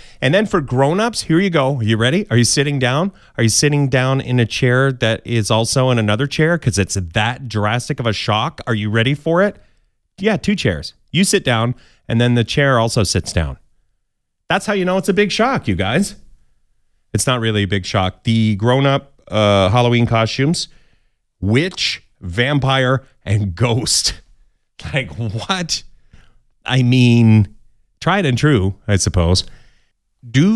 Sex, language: male, English